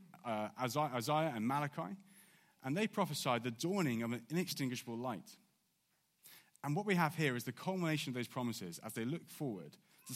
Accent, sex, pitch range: British, male, 115-160 Hz